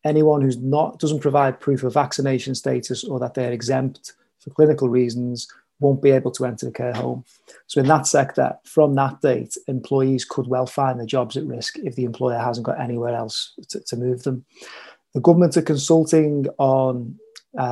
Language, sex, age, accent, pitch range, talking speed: English, male, 30-49, British, 130-145 Hz, 185 wpm